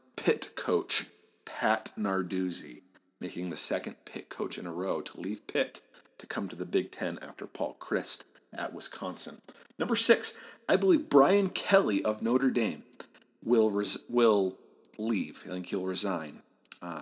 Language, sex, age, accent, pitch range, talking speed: English, male, 40-59, American, 95-135 Hz, 155 wpm